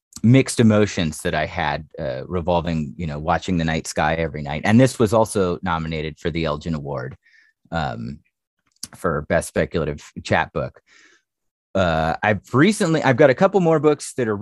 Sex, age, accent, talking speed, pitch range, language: male, 30-49, American, 170 wpm, 80-110 Hz, English